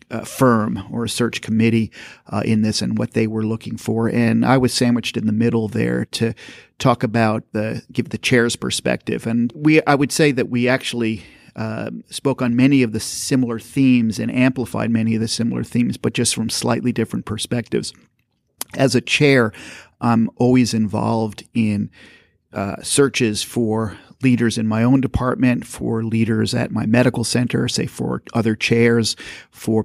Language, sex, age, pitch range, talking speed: English, male, 40-59, 110-120 Hz, 175 wpm